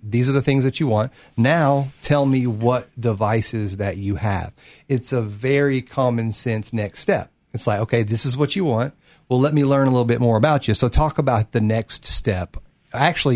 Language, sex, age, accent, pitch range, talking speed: English, male, 40-59, American, 110-140 Hz, 210 wpm